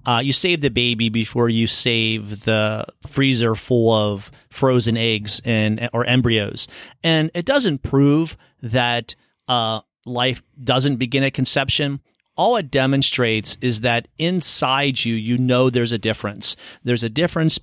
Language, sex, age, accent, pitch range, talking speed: English, male, 30-49, American, 115-140 Hz, 145 wpm